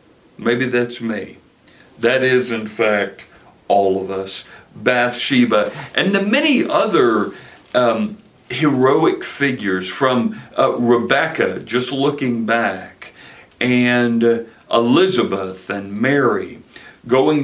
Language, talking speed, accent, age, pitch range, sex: English, 105 wpm, American, 60-79, 105-130 Hz, male